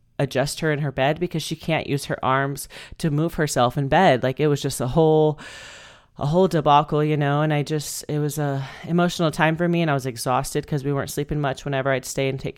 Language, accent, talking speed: English, American, 245 wpm